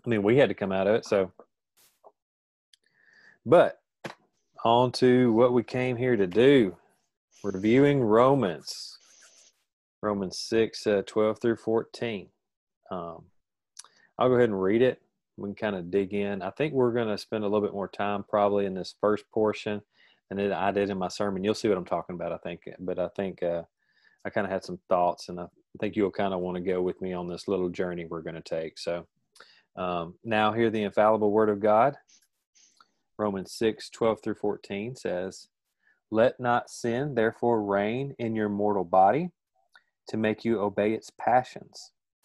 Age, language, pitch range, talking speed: 30-49, English, 100-120 Hz, 185 wpm